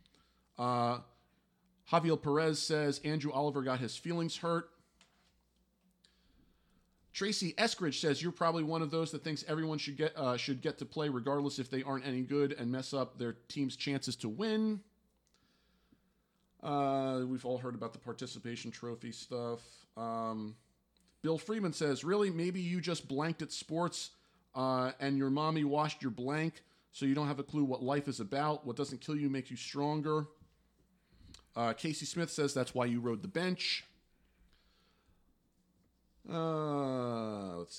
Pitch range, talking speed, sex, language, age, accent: 120-155 Hz, 155 wpm, male, English, 40-59, American